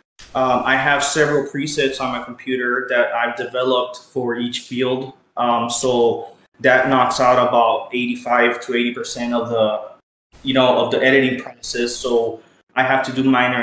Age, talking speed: 20-39, 165 wpm